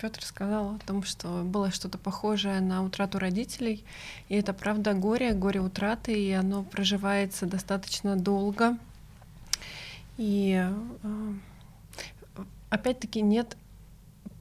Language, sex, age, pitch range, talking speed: Russian, female, 20-39, 190-210 Hz, 105 wpm